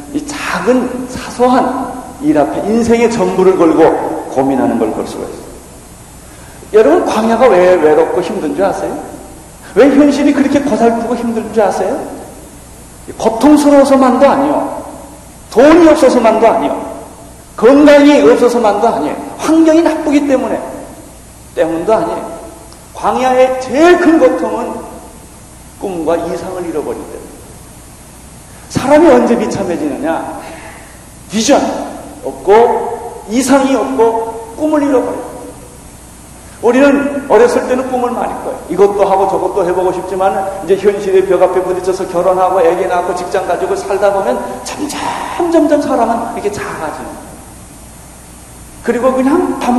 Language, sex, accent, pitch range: Korean, male, native, 195-280 Hz